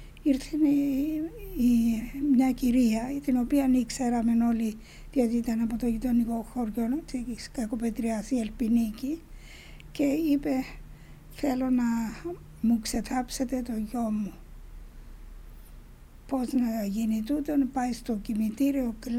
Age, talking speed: 60-79, 105 wpm